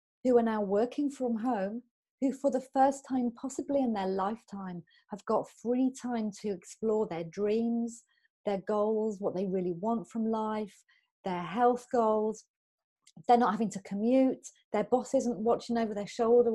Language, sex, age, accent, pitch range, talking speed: English, female, 30-49, British, 190-235 Hz, 165 wpm